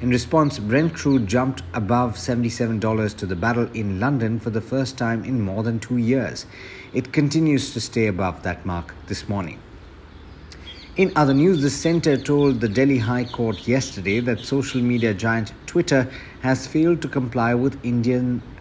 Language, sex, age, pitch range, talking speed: English, male, 60-79, 110-130 Hz, 170 wpm